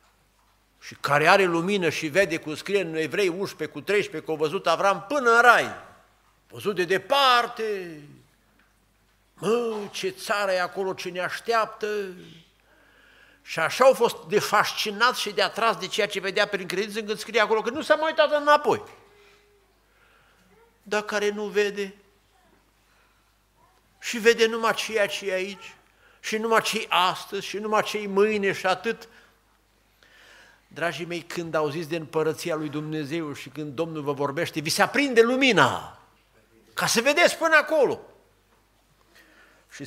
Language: Romanian